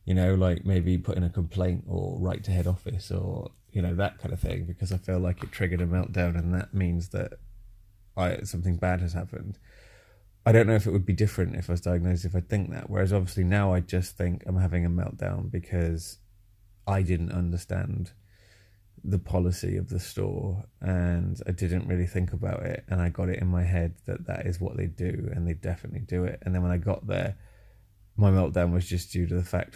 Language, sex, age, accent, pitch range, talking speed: English, male, 20-39, British, 90-105 Hz, 220 wpm